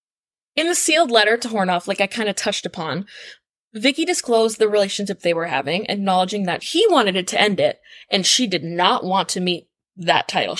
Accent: American